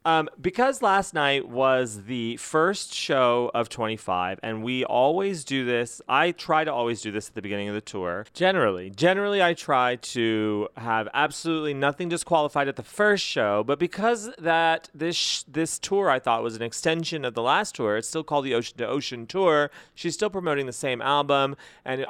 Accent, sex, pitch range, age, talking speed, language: American, male, 120-180 Hz, 30-49, 190 wpm, English